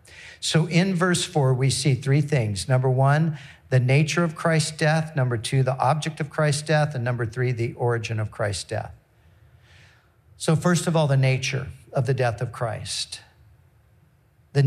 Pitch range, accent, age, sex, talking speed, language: 125-160 Hz, American, 50-69, male, 170 wpm, English